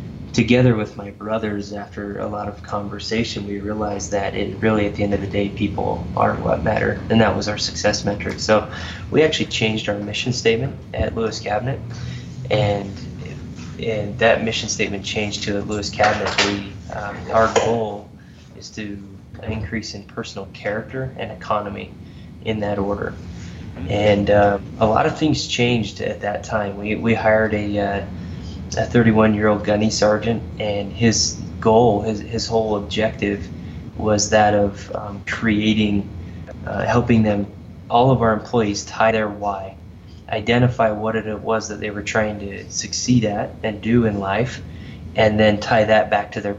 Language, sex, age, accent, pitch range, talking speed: English, male, 20-39, American, 100-110 Hz, 165 wpm